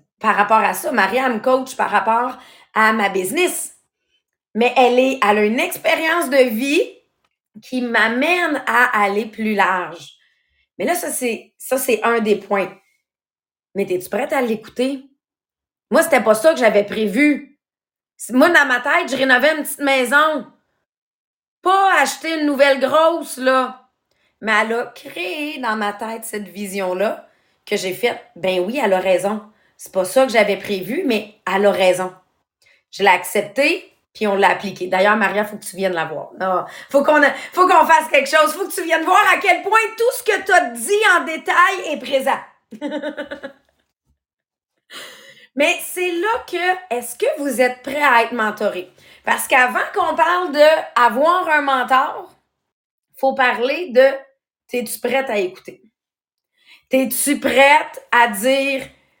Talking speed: 170 wpm